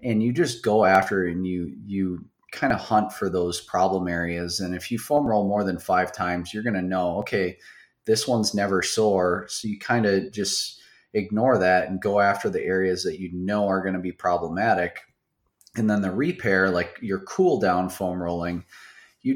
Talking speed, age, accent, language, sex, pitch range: 200 wpm, 30-49, American, English, male, 90-105 Hz